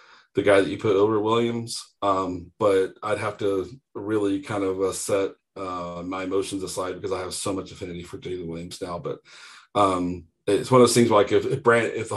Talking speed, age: 210 wpm, 40-59